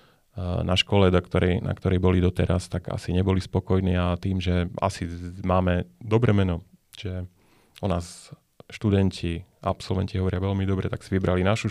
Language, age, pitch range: Slovak, 30-49, 90-100 Hz